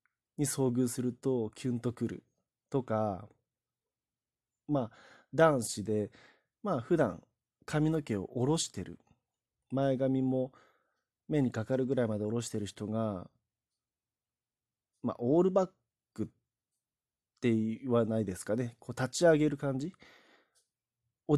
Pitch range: 110-140 Hz